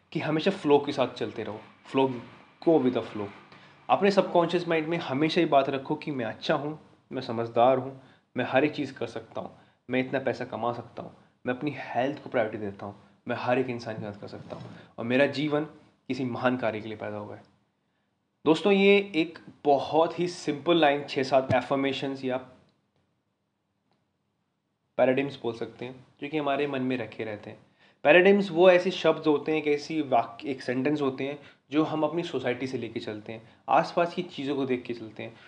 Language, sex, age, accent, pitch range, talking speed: Hindi, male, 20-39, native, 120-155 Hz, 200 wpm